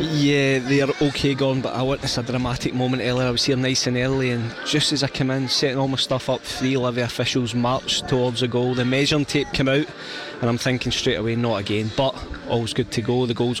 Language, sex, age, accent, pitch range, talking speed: English, male, 20-39, British, 120-140 Hz, 240 wpm